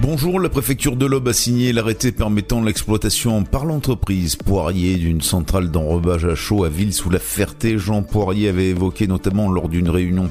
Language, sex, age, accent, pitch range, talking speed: French, male, 50-69, French, 85-110 Hz, 165 wpm